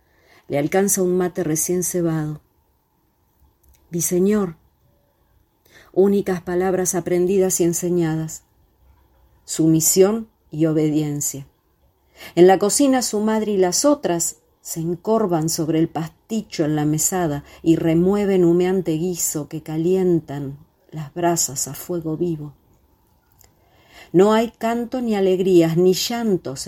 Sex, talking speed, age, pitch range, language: female, 110 wpm, 40-59, 150-185 Hz, Spanish